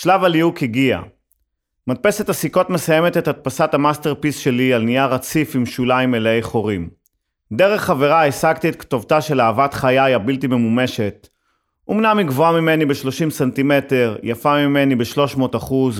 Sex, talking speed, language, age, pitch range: male, 140 wpm, Hebrew, 30-49, 120-155 Hz